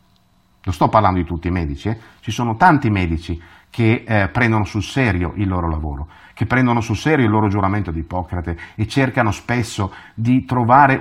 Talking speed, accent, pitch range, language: 185 wpm, native, 90-130 Hz, Italian